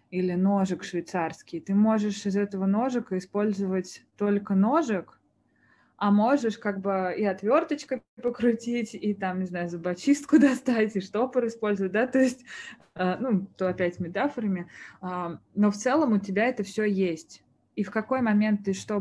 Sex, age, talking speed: female, 20-39, 150 wpm